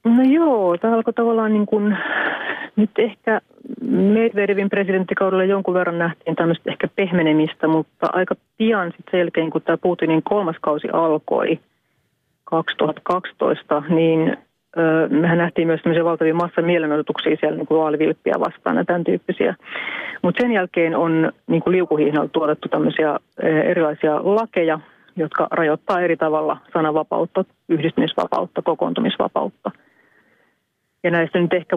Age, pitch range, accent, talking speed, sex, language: 30-49, 160-185 Hz, native, 125 wpm, female, Finnish